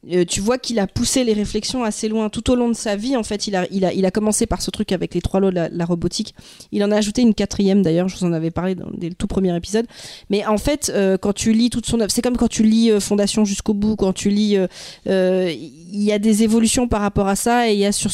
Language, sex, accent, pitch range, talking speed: French, female, French, 190-225 Hz, 300 wpm